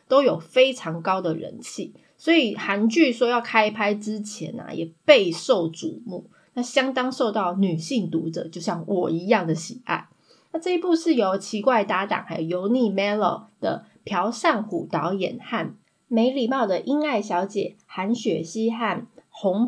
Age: 20-39